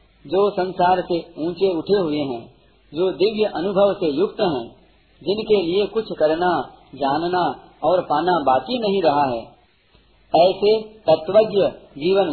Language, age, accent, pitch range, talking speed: Hindi, 50-69, native, 145-200 Hz, 125 wpm